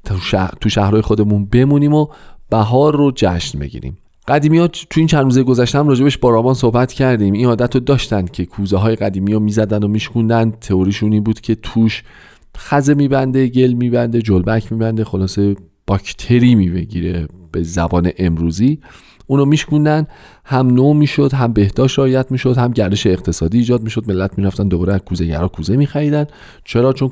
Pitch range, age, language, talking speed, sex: 95-140 Hz, 40-59, Persian, 160 wpm, male